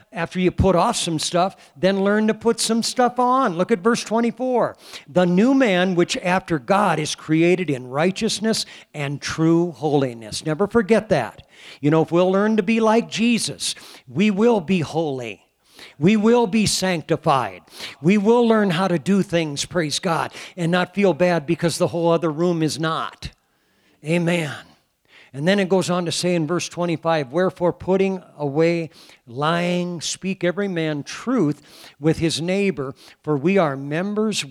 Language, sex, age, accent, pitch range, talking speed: English, male, 50-69, American, 145-195 Hz, 165 wpm